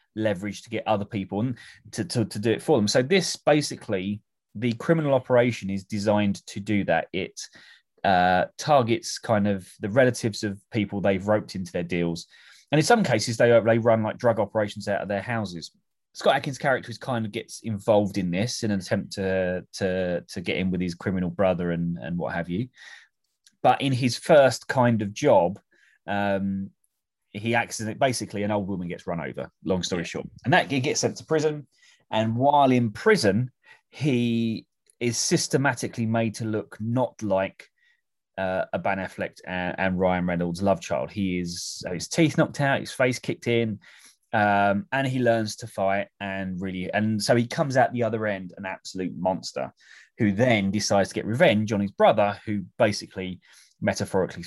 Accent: British